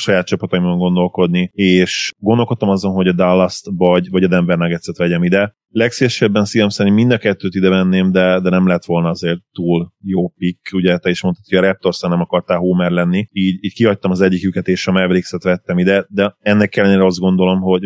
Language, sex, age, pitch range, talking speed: Hungarian, male, 30-49, 90-95 Hz, 200 wpm